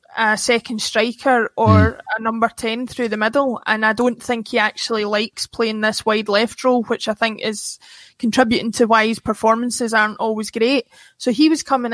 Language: English